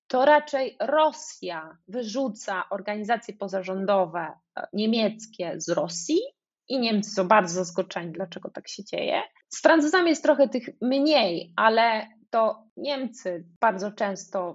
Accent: native